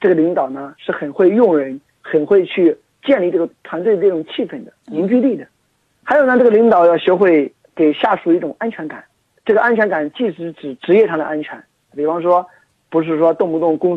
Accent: native